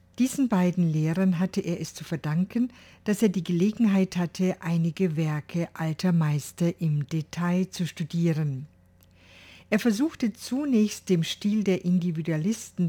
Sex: female